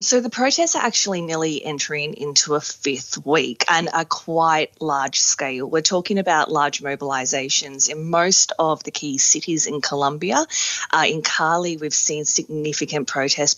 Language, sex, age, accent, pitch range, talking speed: English, female, 20-39, Australian, 140-185 Hz, 160 wpm